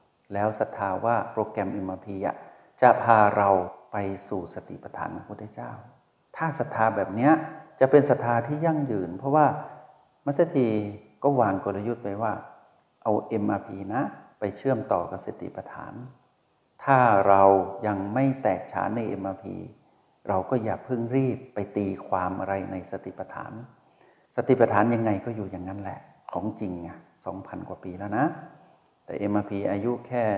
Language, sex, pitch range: Thai, male, 95-125 Hz